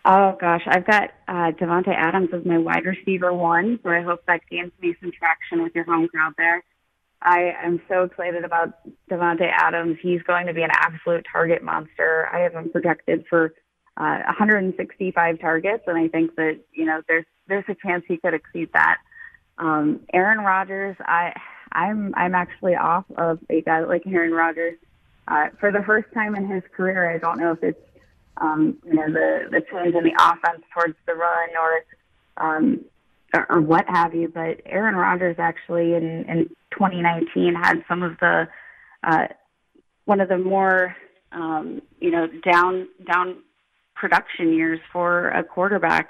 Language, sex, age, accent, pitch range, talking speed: English, female, 20-39, American, 165-185 Hz, 175 wpm